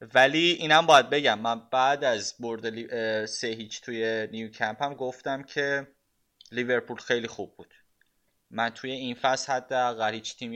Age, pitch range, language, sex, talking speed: 20-39, 105-120 Hz, Persian, male, 160 wpm